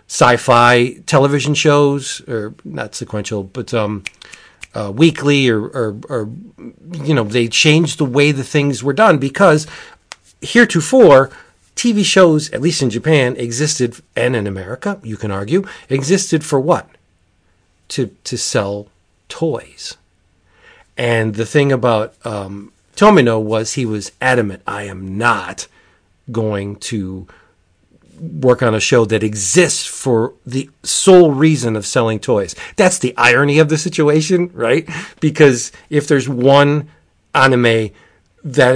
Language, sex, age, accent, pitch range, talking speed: English, male, 40-59, American, 110-150 Hz, 135 wpm